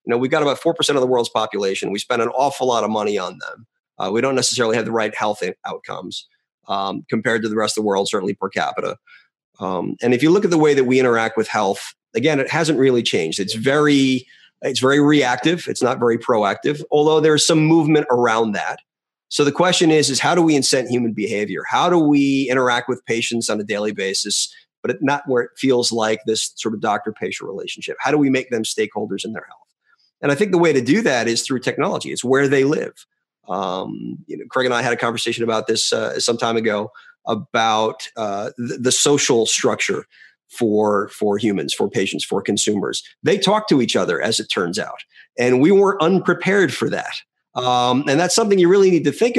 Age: 30-49